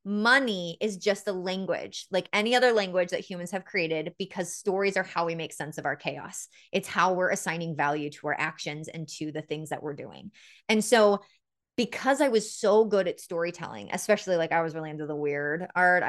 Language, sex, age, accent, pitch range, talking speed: English, female, 20-39, American, 165-215 Hz, 210 wpm